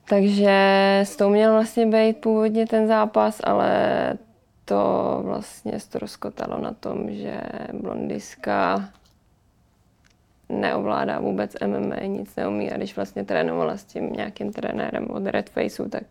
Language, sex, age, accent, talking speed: Czech, female, 20-39, native, 125 wpm